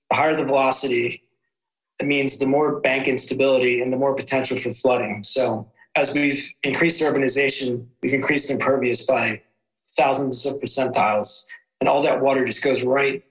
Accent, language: American, English